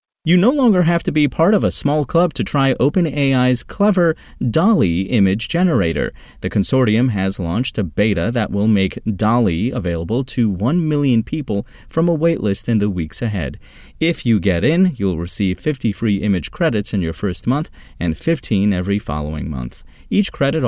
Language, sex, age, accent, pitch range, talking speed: English, male, 30-49, American, 95-135 Hz, 175 wpm